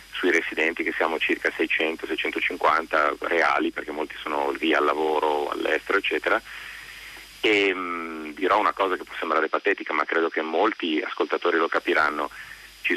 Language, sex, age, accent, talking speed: Italian, male, 30-49, native, 150 wpm